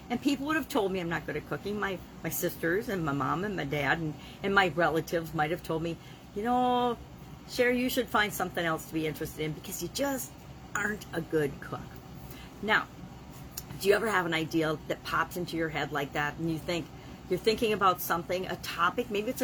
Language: English